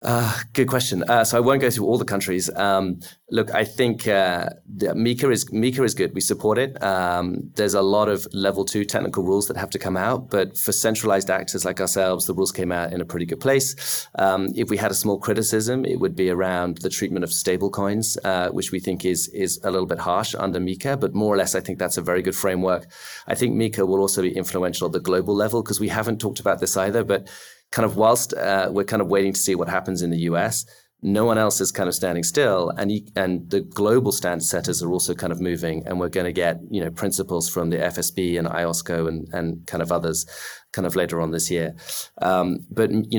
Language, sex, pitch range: English, male, 90-105 Hz